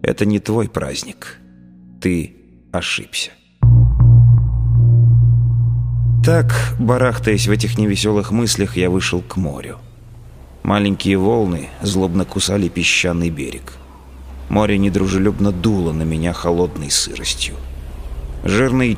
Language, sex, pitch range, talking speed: Russian, male, 65-100 Hz, 95 wpm